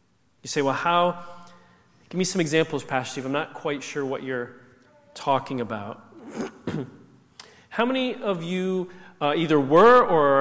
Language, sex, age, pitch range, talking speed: English, male, 40-59, 150-210 Hz, 150 wpm